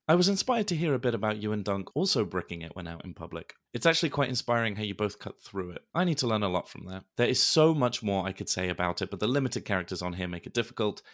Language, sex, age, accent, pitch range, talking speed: English, male, 30-49, British, 90-120 Hz, 295 wpm